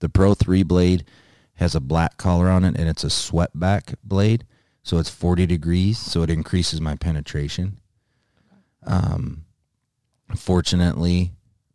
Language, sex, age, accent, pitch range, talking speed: English, male, 30-49, American, 80-100 Hz, 135 wpm